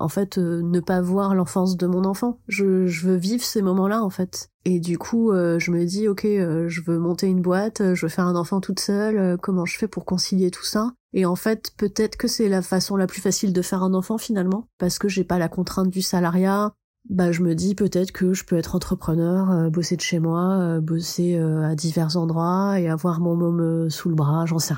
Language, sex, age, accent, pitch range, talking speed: French, female, 30-49, French, 175-205 Hz, 250 wpm